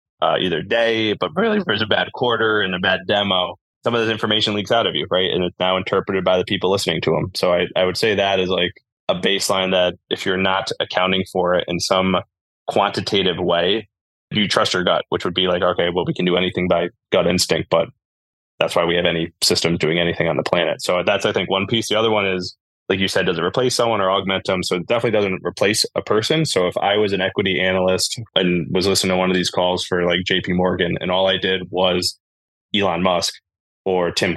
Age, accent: 20-39, American